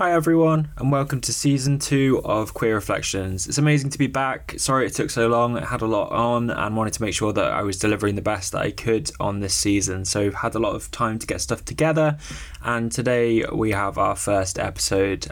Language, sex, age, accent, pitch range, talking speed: English, male, 20-39, British, 100-130 Hz, 235 wpm